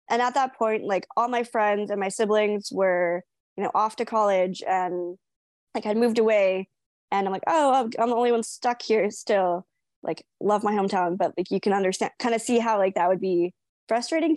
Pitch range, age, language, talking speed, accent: 190-230 Hz, 20-39, English, 215 wpm, American